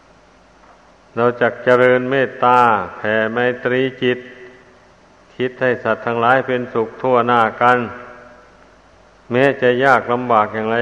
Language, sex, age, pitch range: Thai, male, 60-79, 115-130 Hz